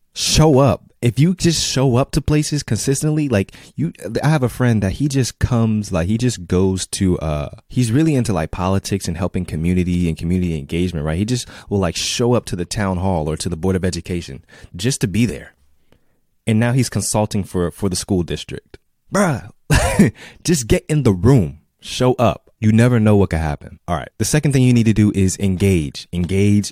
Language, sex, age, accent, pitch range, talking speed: English, male, 20-39, American, 85-115 Hz, 210 wpm